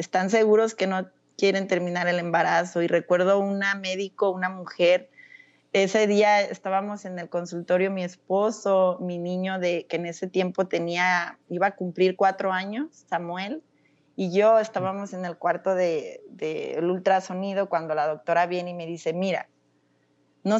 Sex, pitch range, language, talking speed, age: female, 175-210 Hz, Spanish, 150 wpm, 30-49